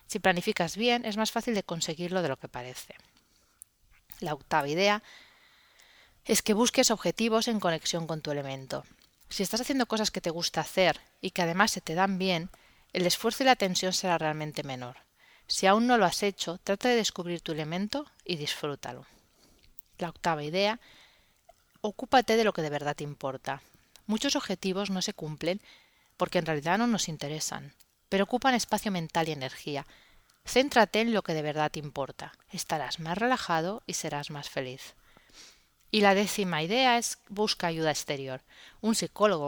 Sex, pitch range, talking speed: female, 160-215 Hz, 170 wpm